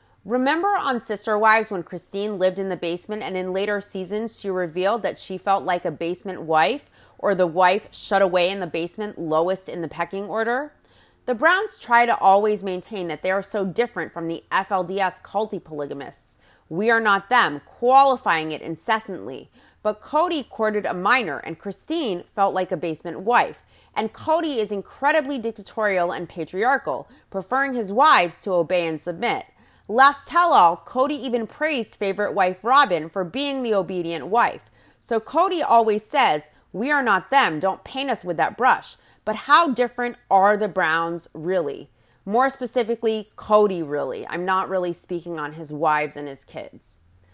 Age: 30-49